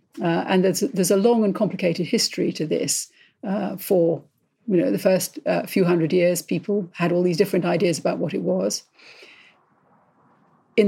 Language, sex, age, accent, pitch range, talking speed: English, female, 50-69, British, 175-220 Hz, 175 wpm